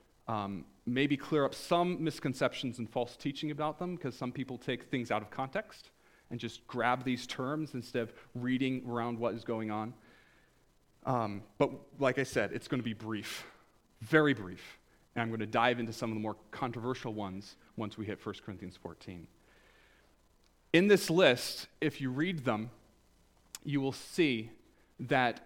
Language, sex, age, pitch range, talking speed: English, male, 30-49, 115-145 Hz, 170 wpm